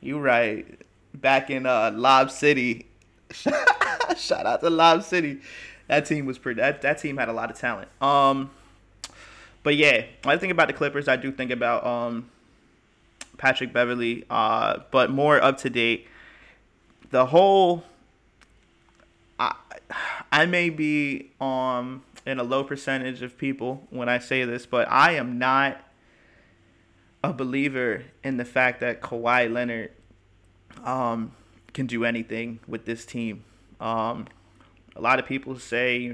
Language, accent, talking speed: English, American, 150 wpm